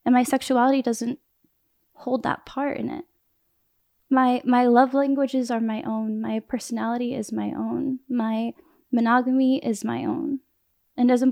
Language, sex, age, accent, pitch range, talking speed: English, female, 10-29, American, 230-270 Hz, 150 wpm